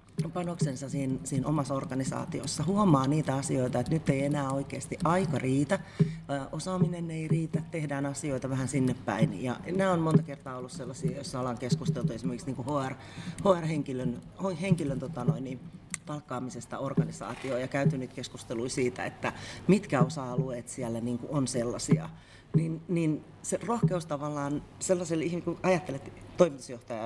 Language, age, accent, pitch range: Finnish, 30-49, native, 120-160 Hz